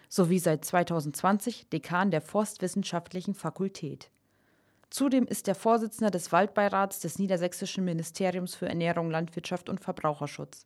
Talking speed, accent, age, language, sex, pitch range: 120 wpm, German, 30-49, German, female, 170-210 Hz